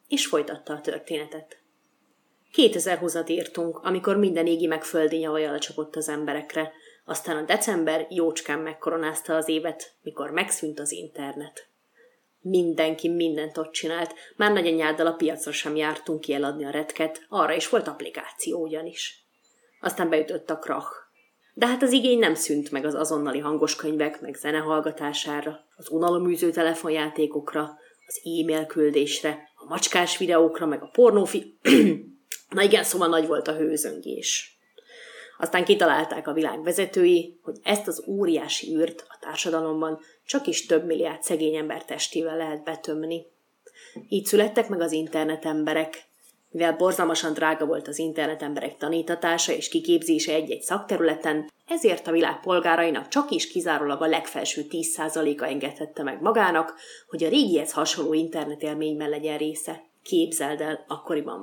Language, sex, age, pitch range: Hungarian, female, 30-49, 155-170 Hz